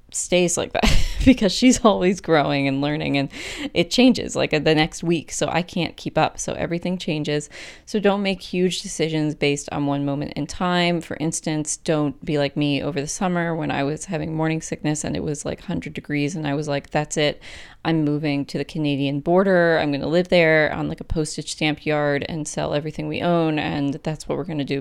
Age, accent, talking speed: 20-39, American, 220 wpm